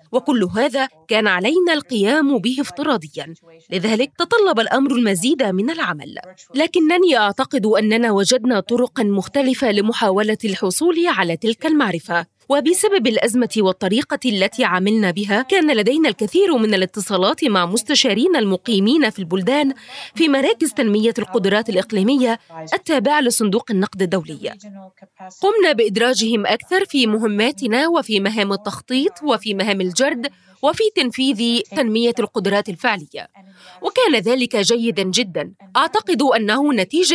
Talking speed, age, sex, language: 115 wpm, 20-39, female, English